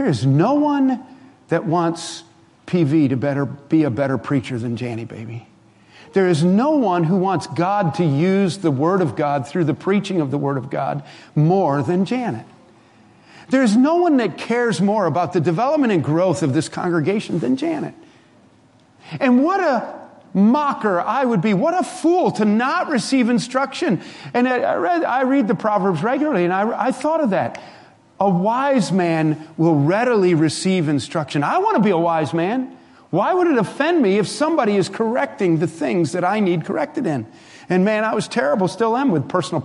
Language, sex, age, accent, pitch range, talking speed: English, male, 50-69, American, 145-230 Hz, 190 wpm